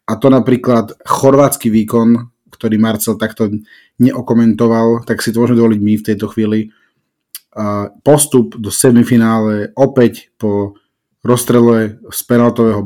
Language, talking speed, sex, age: Slovak, 120 wpm, male, 30-49